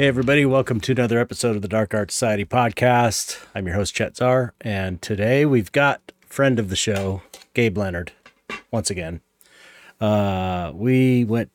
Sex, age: male, 40-59